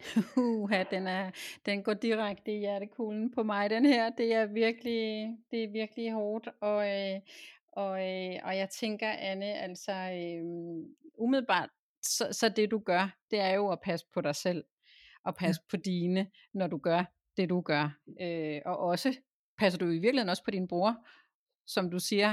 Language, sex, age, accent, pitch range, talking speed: Danish, female, 30-49, native, 170-210 Hz, 170 wpm